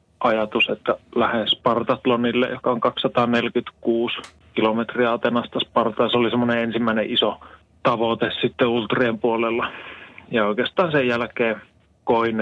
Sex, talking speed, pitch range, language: male, 115 wpm, 110-125 Hz, Finnish